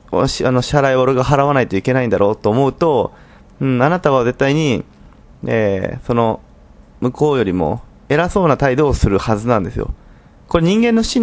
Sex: male